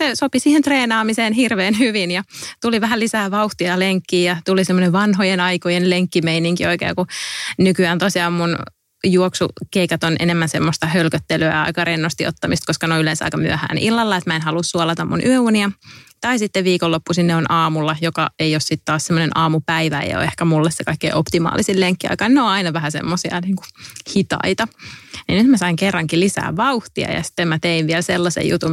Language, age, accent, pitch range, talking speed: English, 30-49, Finnish, 165-195 Hz, 180 wpm